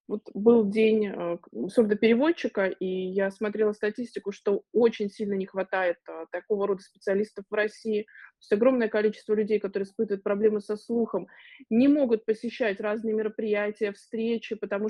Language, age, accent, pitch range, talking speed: Russian, 20-39, native, 190-225 Hz, 140 wpm